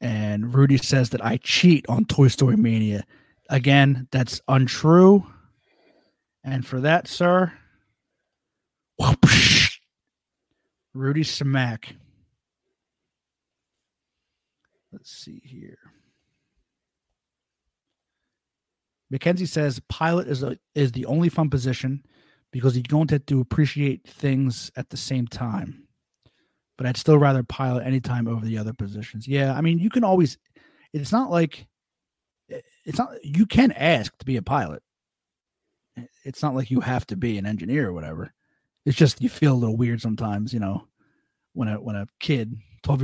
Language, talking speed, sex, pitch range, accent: English, 140 wpm, male, 115-145 Hz, American